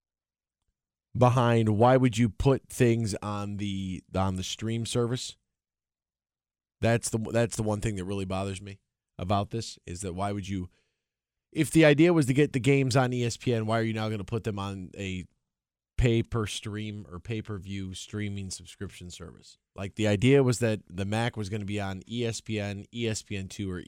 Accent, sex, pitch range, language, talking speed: American, male, 95-115 Hz, English, 175 wpm